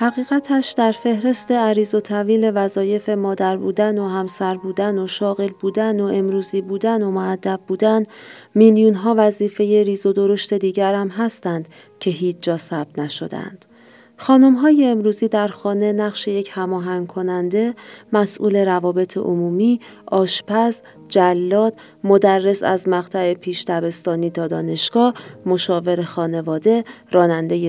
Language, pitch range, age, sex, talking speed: Persian, 175-220 Hz, 40-59, female, 120 wpm